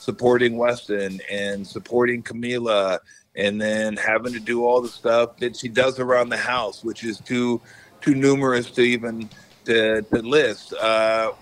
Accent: American